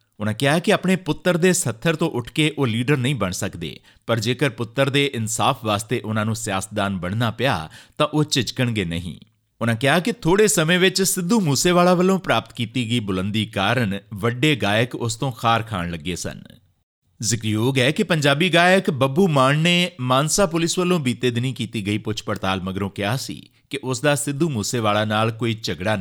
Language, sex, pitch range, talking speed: Punjabi, male, 110-160 Hz, 180 wpm